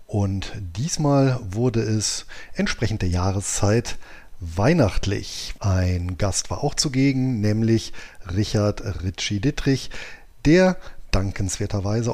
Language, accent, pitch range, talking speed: German, German, 100-130 Hz, 90 wpm